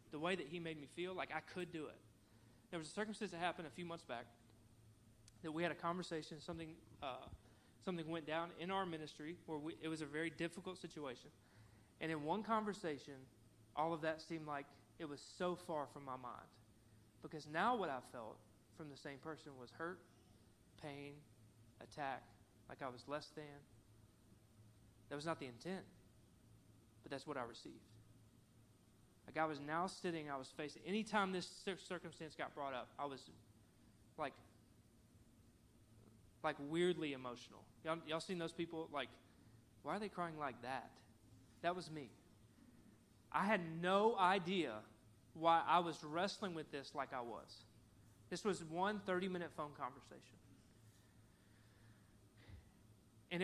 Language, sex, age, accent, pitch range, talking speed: English, male, 30-49, American, 110-165 Hz, 160 wpm